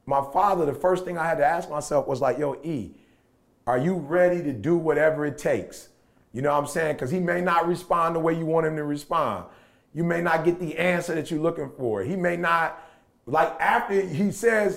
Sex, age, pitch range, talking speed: male, 30-49, 150-210 Hz, 230 wpm